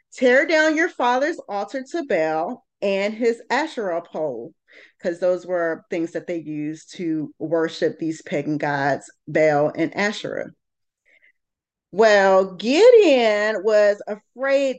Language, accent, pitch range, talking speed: English, American, 180-260 Hz, 120 wpm